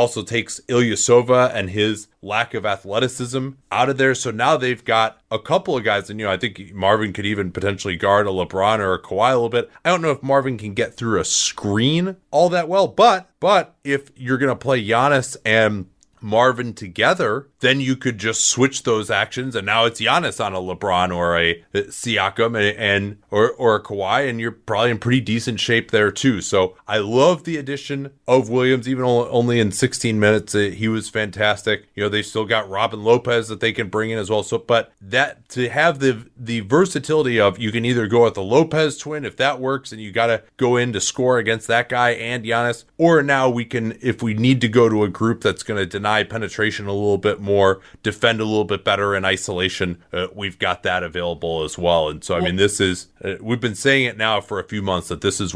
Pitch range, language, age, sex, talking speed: 100-125 Hz, English, 30-49, male, 225 wpm